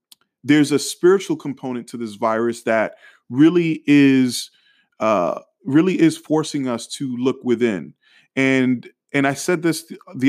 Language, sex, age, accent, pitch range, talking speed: English, male, 20-39, American, 115-145 Hz, 145 wpm